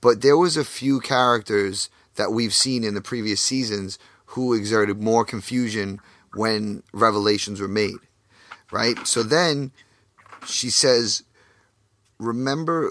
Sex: male